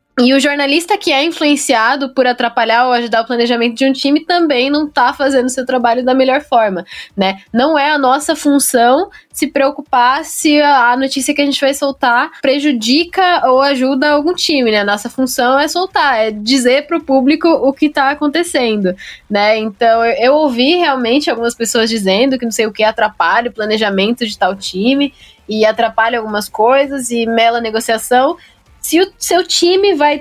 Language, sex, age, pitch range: Portuguese, female, 10-29, 235-295 Hz